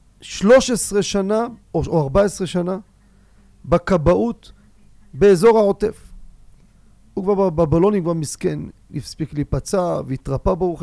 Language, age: Hebrew, 40-59